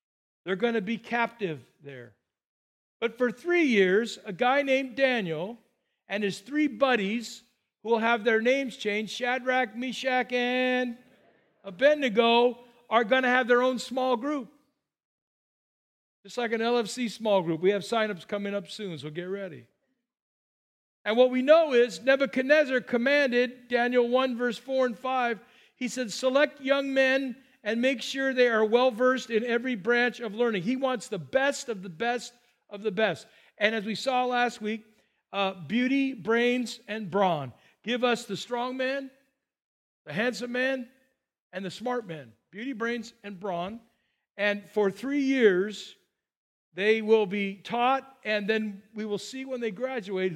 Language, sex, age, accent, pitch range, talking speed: English, male, 50-69, American, 205-255 Hz, 160 wpm